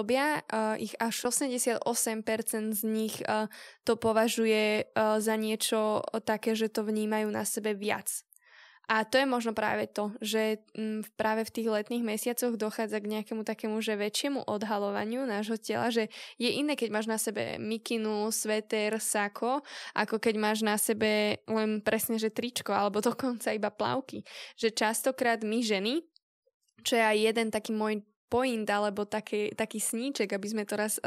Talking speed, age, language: 155 wpm, 10-29, Slovak